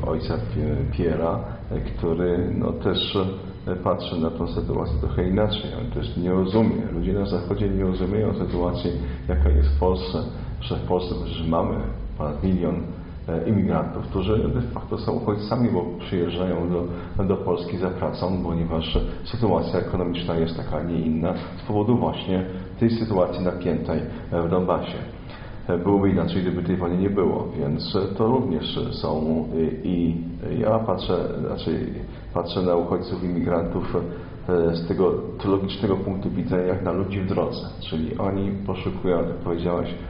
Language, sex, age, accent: Polish, male, 40-59, native